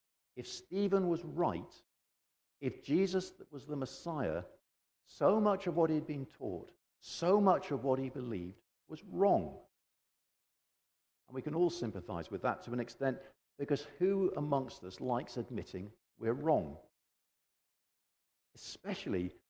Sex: male